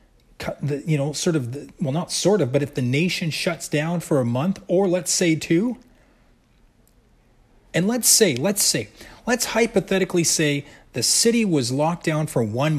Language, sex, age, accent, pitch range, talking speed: English, male, 30-49, American, 120-180 Hz, 175 wpm